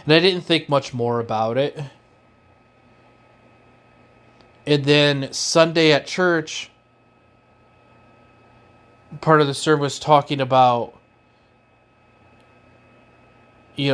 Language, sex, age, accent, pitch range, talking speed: English, male, 30-49, American, 125-145 Hz, 90 wpm